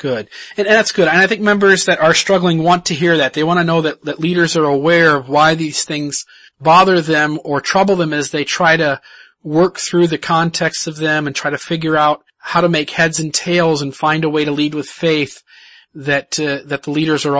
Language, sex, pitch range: English, male, 145-175 Hz